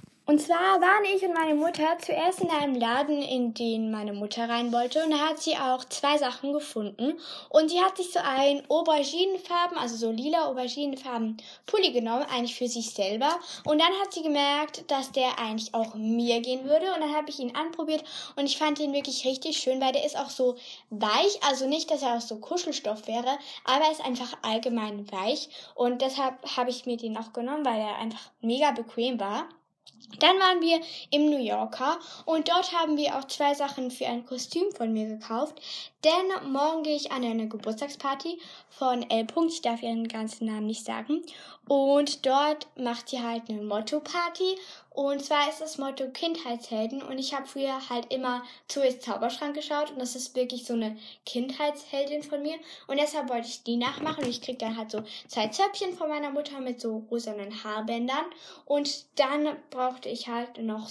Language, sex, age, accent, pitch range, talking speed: German, female, 10-29, German, 235-300 Hz, 190 wpm